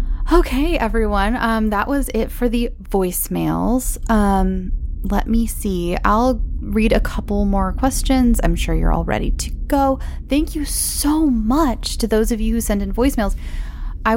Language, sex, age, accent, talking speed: English, female, 20-39, American, 165 wpm